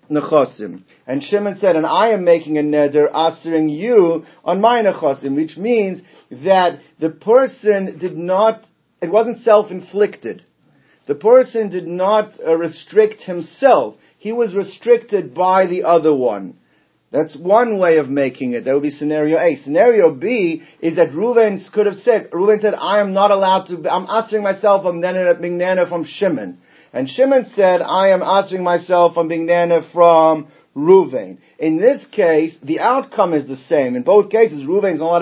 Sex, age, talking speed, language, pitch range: male, 50-69, 170 wpm, English, 170-220 Hz